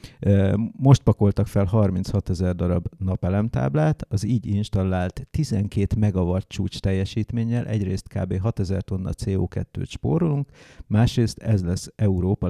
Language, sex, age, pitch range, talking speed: English, male, 50-69, 90-110 Hz, 115 wpm